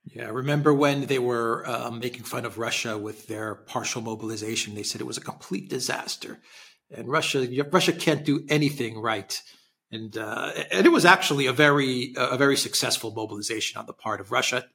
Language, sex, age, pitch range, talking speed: English, male, 40-59, 110-140 Hz, 195 wpm